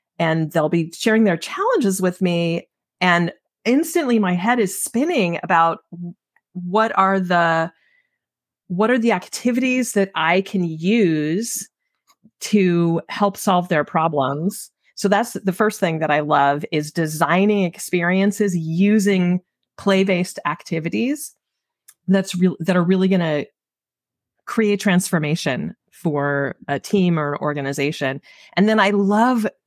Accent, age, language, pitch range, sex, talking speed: American, 30-49, English, 165-205 Hz, female, 125 wpm